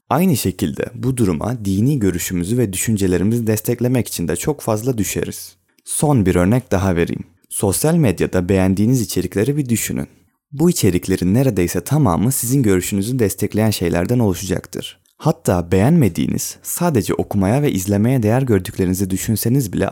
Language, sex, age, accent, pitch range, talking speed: Turkish, male, 30-49, native, 95-125 Hz, 135 wpm